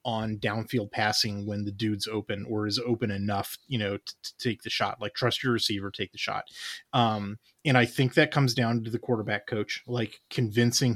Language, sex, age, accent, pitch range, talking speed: English, male, 30-49, American, 110-130 Hz, 210 wpm